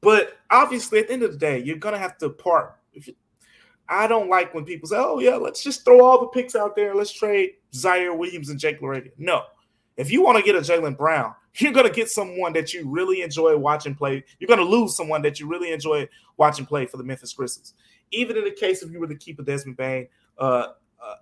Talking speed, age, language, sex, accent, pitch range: 240 wpm, 20-39, English, male, American, 145-180 Hz